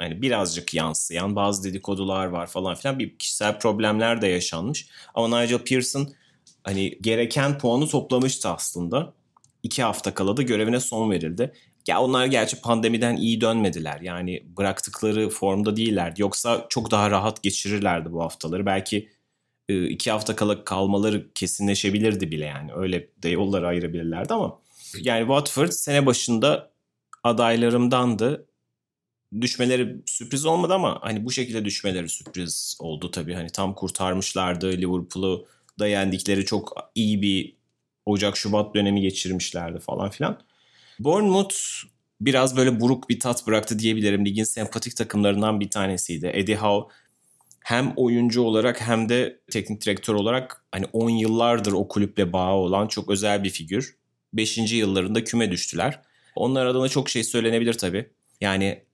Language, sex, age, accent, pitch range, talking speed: Turkish, male, 30-49, native, 95-120 Hz, 135 wpm